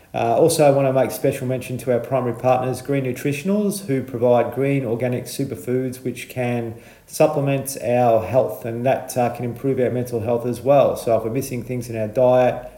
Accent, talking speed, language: Australian, 195 wpm, English